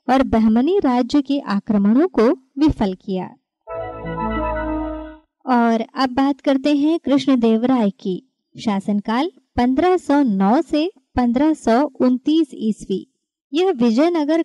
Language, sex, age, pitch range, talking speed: Hindi, male, 20-39, 220-300 Hz, 95 wpm